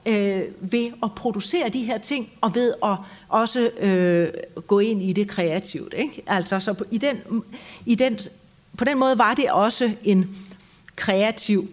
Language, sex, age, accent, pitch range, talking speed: Danish, female, 40-59, native, 180-230 Hz, 165 wpm